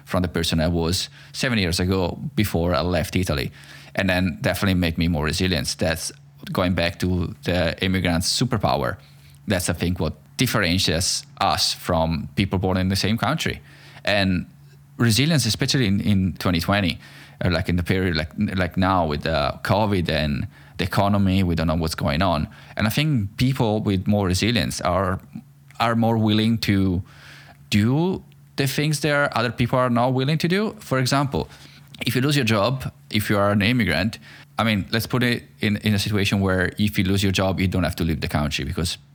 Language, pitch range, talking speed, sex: English, 90-120 Hz, 190 wpm, male